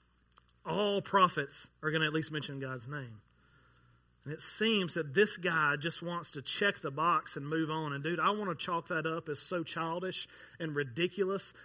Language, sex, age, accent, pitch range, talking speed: English, male, 40-59, American, 130-180 Hz, 195 wpm